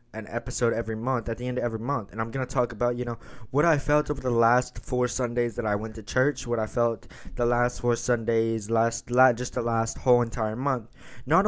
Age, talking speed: 20-39, 240 wpm